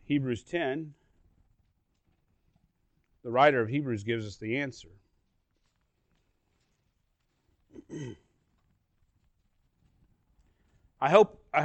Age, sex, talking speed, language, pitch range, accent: 40-59, male, 60 wpm, English, 110-145 Hz, American